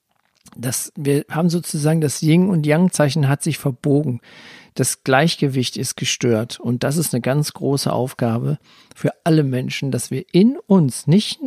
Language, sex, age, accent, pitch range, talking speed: German, male, 50-69, German, 125-160 Hz, 145 wpm